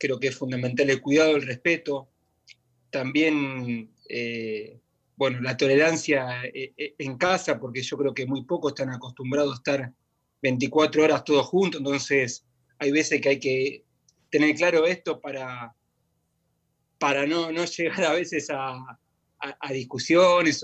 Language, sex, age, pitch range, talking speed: Spanish, male, 30-49, 130-155 Hz, 140 wpm